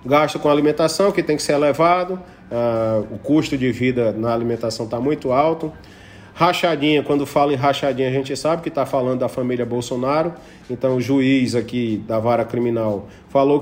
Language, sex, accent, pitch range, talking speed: Portuguese, male, Brazilian, 115-140 Hz, 175 wpm